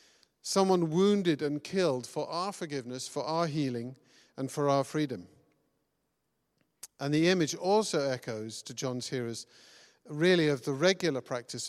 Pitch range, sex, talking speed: 130-165 Hz, male, 140 wpm